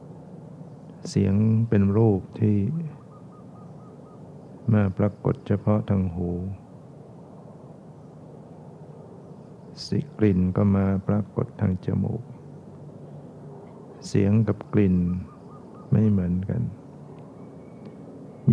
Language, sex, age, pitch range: Thai, male, 60-79, 95-115 Hz